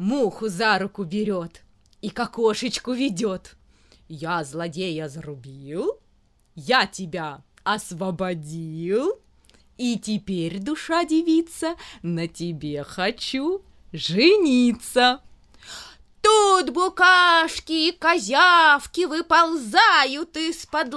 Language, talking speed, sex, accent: Russian, 75 wpm, female, native